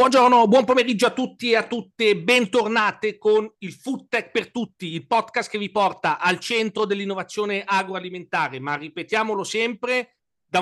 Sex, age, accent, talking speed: male, 40-59, native, 160 wpm